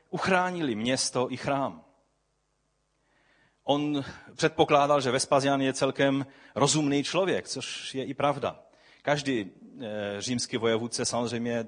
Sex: male